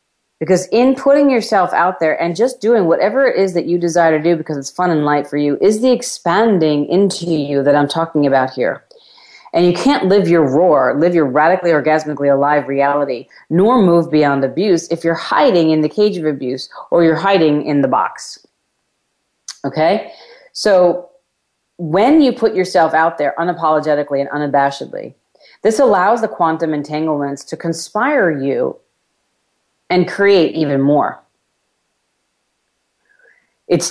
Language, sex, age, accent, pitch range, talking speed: English, female, 40-59, American, 145-180 Hz, 155 wpm